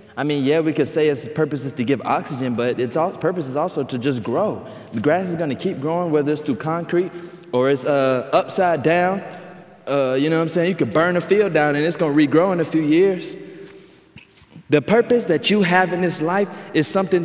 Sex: male